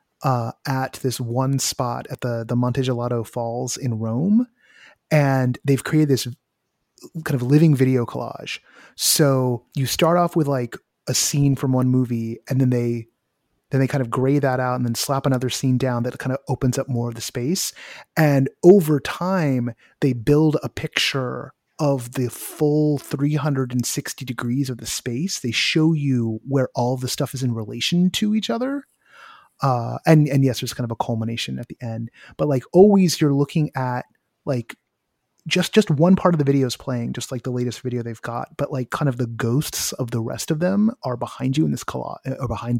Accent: American